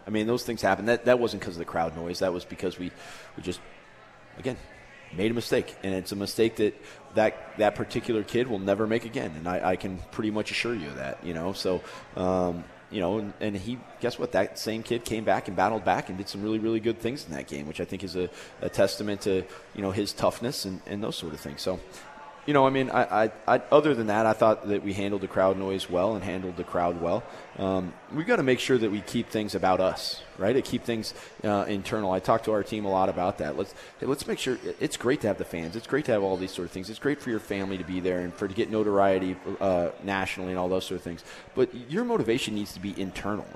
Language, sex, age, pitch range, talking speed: English, male, 30-49, 95-115 Hz, 265 wpm